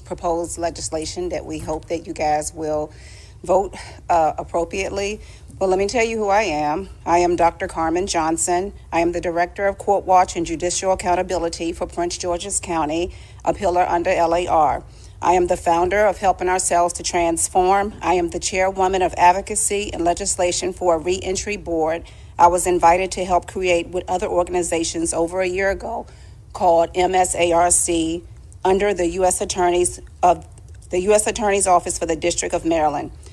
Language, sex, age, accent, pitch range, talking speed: English, female, 40-59, American, 170-190 Hz, 165 wpm